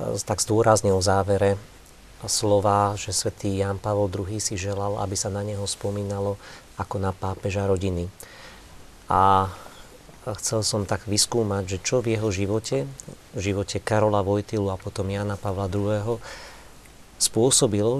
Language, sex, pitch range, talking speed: Slovak, male, 100-115 Hz, 135 wpm